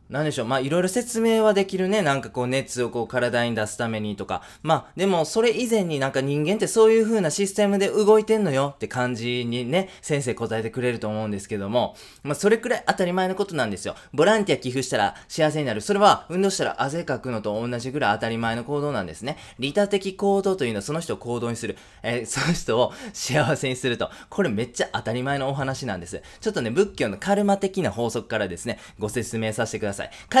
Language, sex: Japanese, male